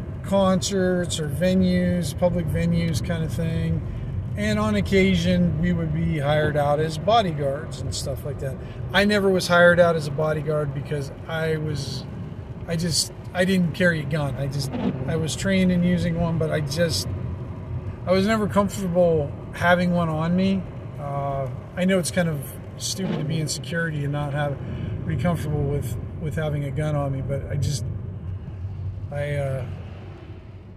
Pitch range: 125-170 Hz